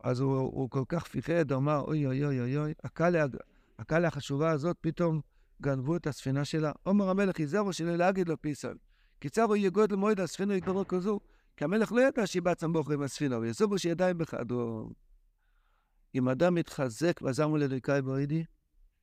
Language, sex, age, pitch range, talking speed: Hebrew, male, 60-79, 135-180 Hz, 160 wpm